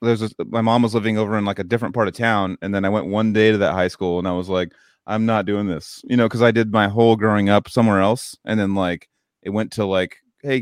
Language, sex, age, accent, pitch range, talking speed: English, male, 30-49, American, 95-115 Hz, 290 wpm